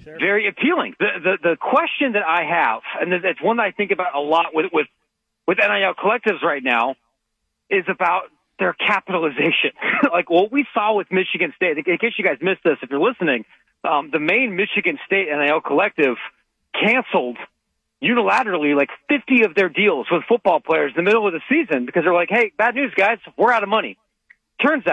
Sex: male